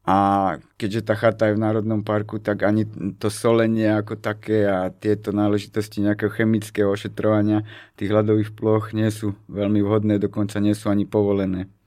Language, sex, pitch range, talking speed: Slovak, male, 105-110 Hz, 160 wpm